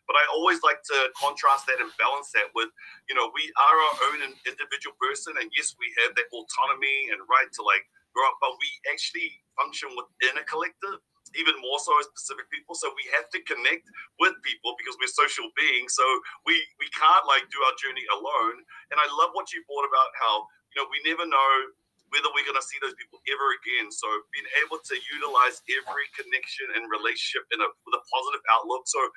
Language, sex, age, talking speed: English, male, 30-49, 210 wpm